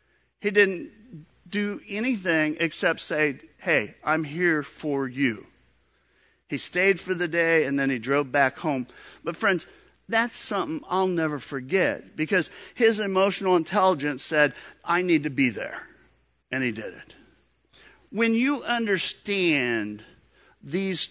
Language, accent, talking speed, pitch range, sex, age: English, American, 135 wpm, 135-190 Hz, male, 50-69